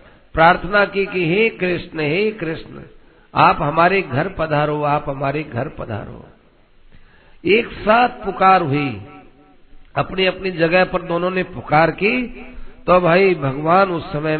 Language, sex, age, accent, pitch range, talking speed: Hindi, male, 50-69, native, 145-185 Hz, 135 wpm